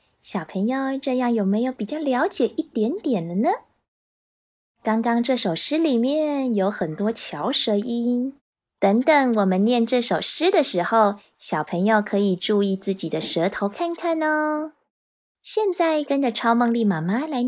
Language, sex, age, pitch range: Chinese, female, 20-39, 205-300 Hz